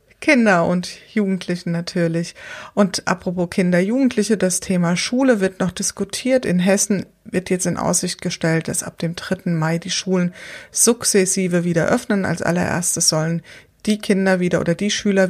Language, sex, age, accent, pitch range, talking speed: German, female, 30-49, German, 175-210 Hz, 155 wpm